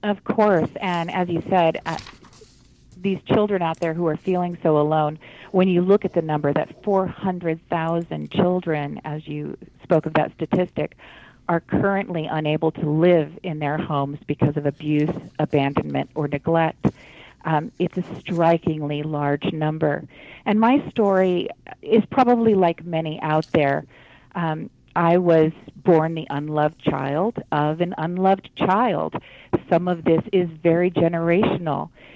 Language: English